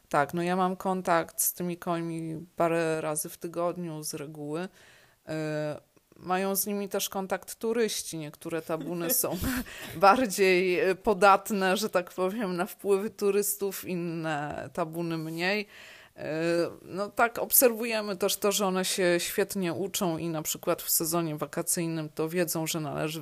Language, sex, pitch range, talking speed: Polish, female, 155-185 Hz, 140 wpm